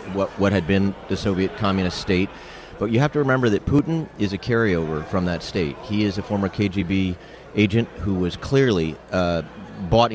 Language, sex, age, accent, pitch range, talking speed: English, male, 30-49, American, 90-110 Hz, 190 wpm